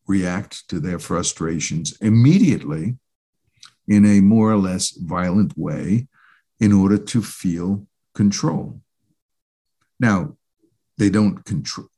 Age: 60-79